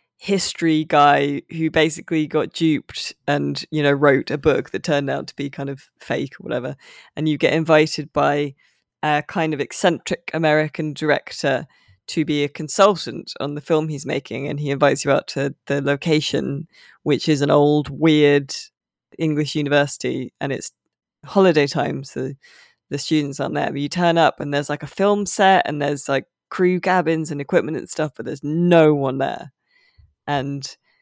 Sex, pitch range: female, 145-165 Hz